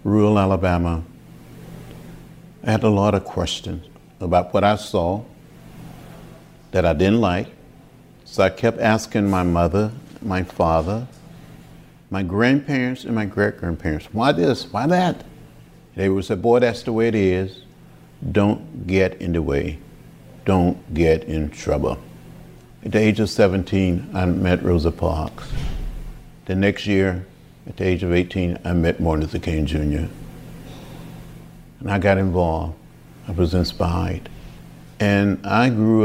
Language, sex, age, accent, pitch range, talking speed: English, male, 60-79, American, 85-110 Hz, 140 wpm